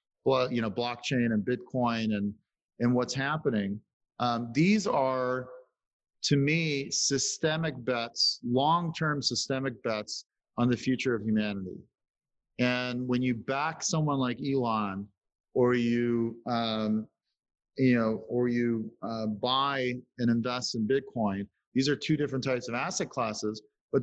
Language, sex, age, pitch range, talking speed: English, male, 40-59, 120-135 Hz, 135 wpm